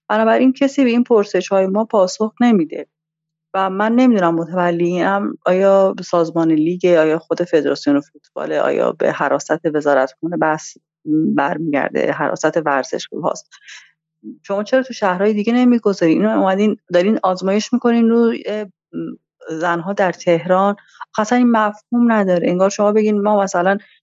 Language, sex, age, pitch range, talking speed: Persian, female, 30-49, 170-210 Hz, 140 wpm